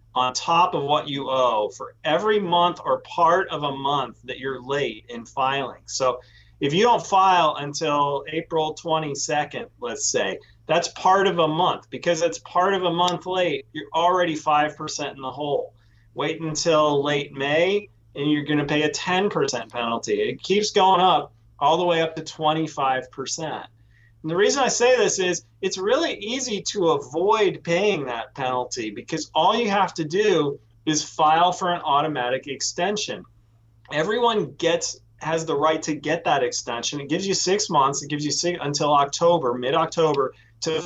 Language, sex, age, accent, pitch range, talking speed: English, male, 40-59, American, 130-170 Hz, 175 wpm